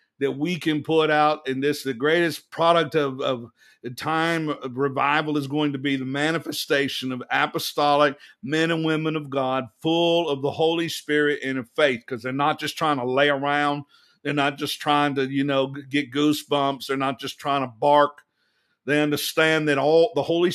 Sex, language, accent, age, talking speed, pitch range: male, English, American, 50-69, 190 wpm, 145-175 Hz